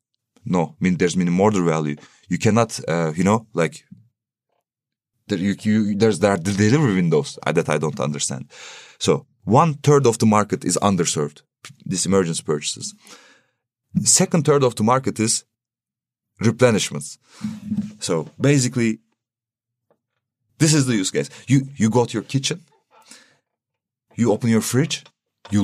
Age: 30-49